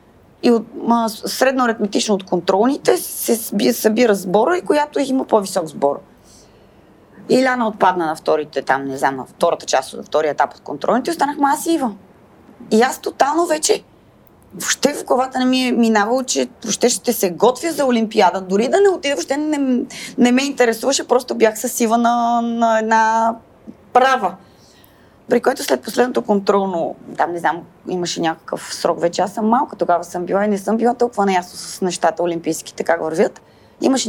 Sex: female